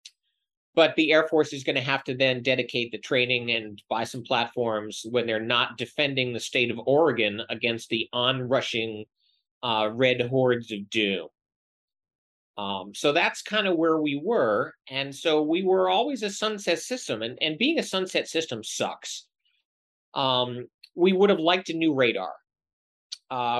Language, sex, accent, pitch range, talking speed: English, male, American, 120-160 Hz, 165 wpm